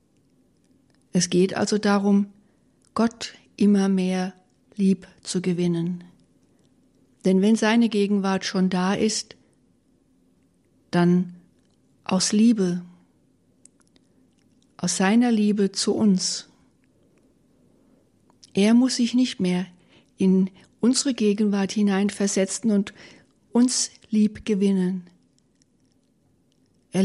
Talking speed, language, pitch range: 85 wpm, German, 185-215 Hz